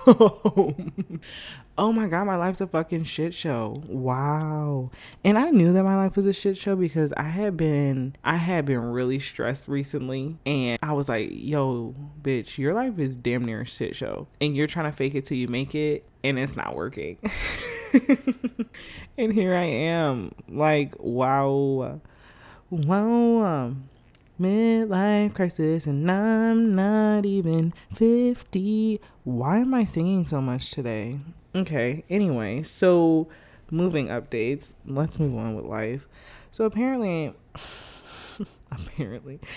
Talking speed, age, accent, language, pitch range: 140 wpm, 20-39, American, English, 125-190 Hz